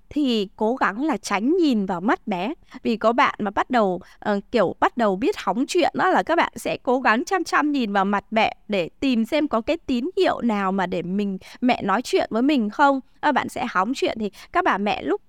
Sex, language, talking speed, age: female, Vietnamese, 245 wpm, 20-39